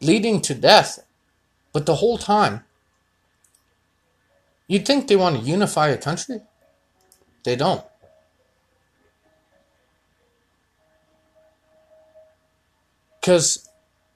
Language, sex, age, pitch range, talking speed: English, male, 30-49, 130-200 Hz, 75 wpm